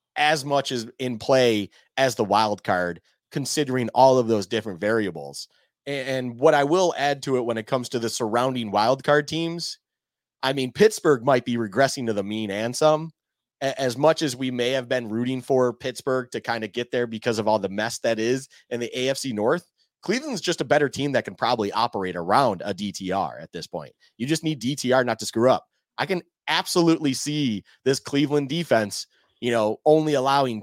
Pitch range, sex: 115-150 Hz, male